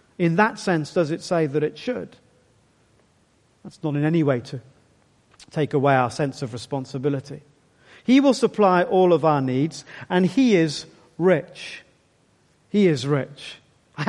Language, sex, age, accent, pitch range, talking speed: English, male, 40-59, British, 150-210 Hz, 155 wpm